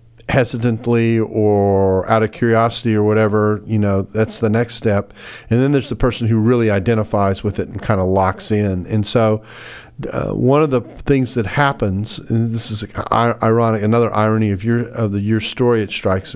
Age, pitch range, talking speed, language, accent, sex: 40-59, 100-115 Hz, 195 wpm, English, American, male